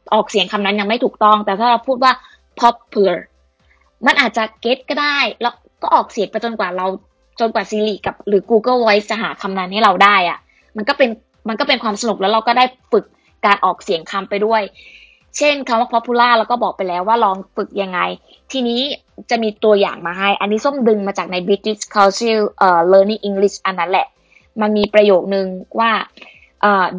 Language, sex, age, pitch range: Thai, female, 20-39, 200-245 Hz